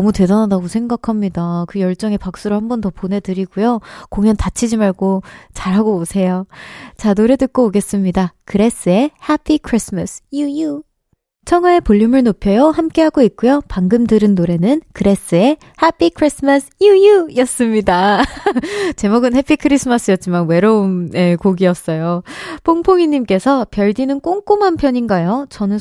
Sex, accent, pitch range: female, native, 190-280 Hz